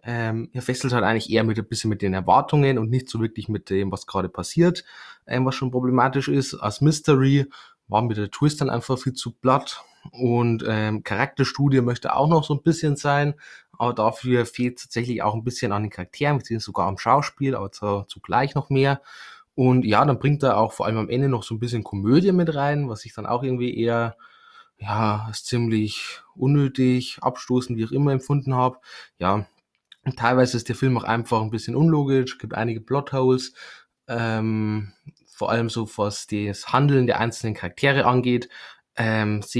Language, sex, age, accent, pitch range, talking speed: German, male, 20-39, German, 110-135 Hz, 190 wpm